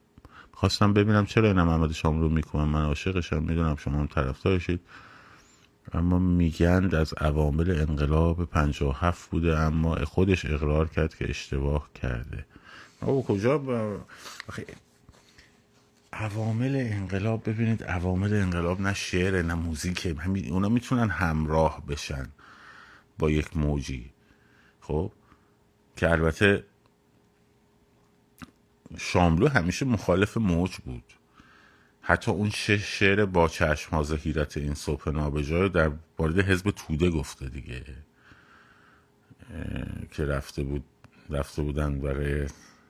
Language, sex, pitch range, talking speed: Persian, male, 75-100 Hz, 110 wpm